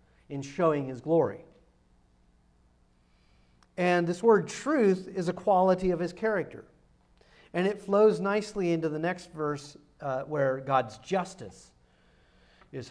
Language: English